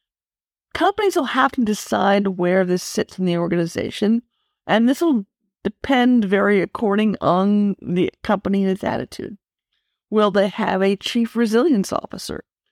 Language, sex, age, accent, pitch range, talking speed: English, female, 50-69, American, 190-240 Hz, 140 wpm